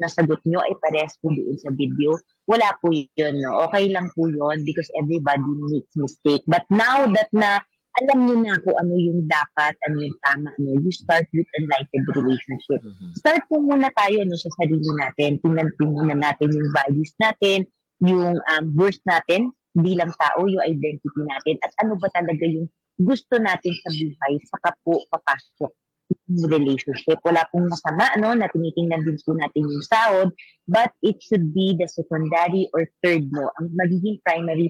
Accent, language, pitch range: native, Filipino, 150-185 Hz